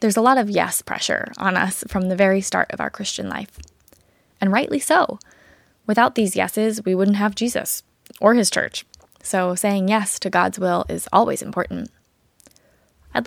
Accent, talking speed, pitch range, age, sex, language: American, 175 wpm, 180-225 Hz, 20-39, female, English